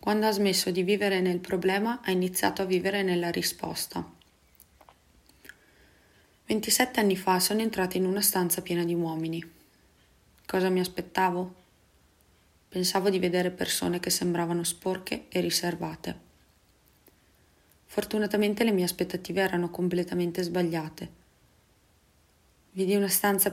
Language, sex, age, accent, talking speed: English, female, 30-49, Italian, 115 wpm